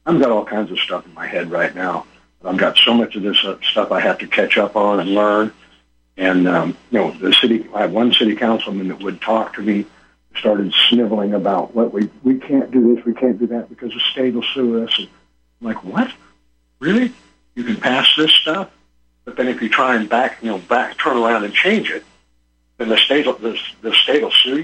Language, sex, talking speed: English, male, 225 wpm